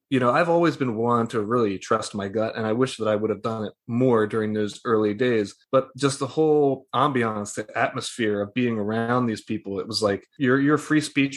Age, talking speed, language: 20-39, 230 wpm, English